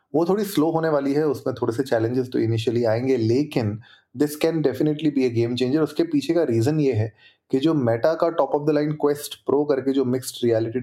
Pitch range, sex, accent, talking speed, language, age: 115-150 Hz, male, native, 225 wpm, Hindi, 30-49